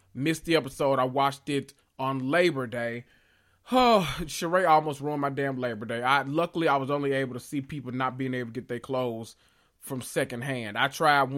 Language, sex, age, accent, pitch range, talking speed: English, male, 20-39, American, 115-150 Hz, 200 wpm